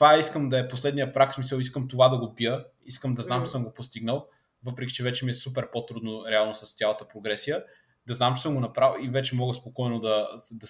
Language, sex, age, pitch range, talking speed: Bulgarian, male, 20-39, 115-140 Hz, 245 wpm